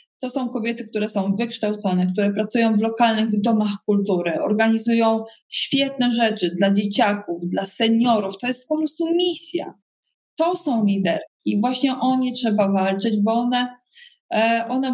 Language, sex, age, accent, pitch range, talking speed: Polish, female, 20-39, native, 195-240 Hz, 145 wpm